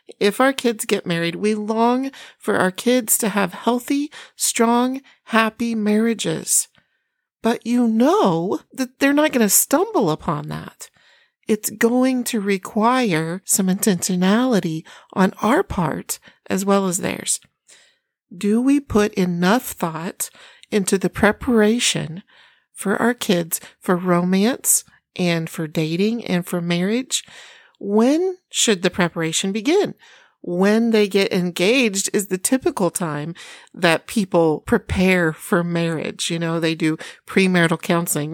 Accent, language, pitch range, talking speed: American, English, 185-235 Hz, 130 wpm